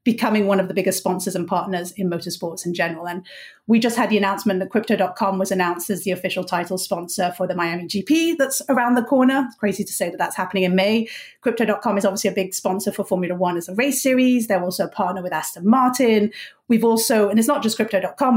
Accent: British